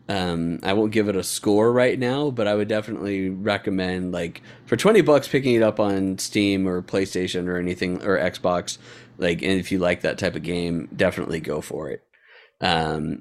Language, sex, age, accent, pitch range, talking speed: English, male, 20-39, American, 95-115 Hz, 195 wpm